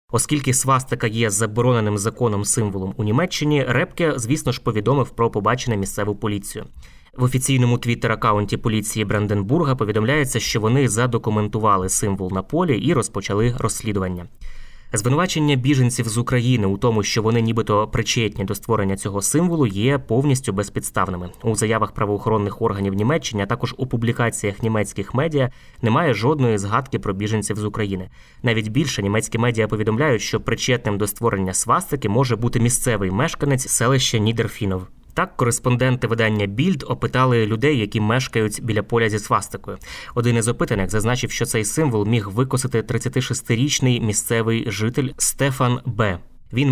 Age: 20-39